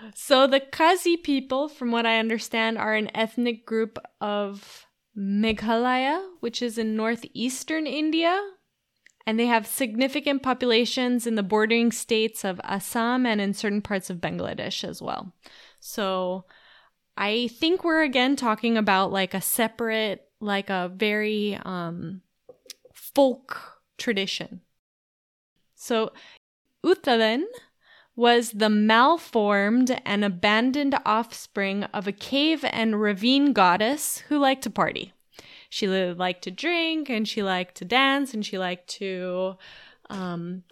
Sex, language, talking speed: female, English, 130 wpm